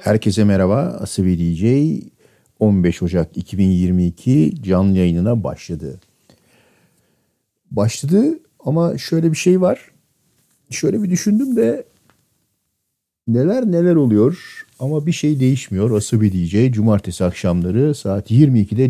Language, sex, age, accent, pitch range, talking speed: Turkish, male, 50-69, native, 95-130 Hz, 105 wpm